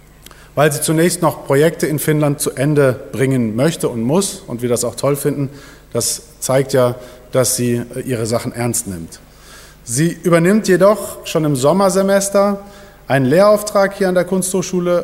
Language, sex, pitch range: German, male, 125-170 Hz